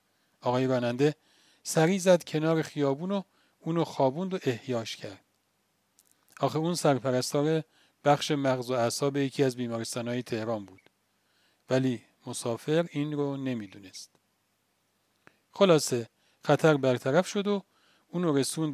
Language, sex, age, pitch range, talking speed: Persian, male, 40-59, 125-160 Hz, 120 wpm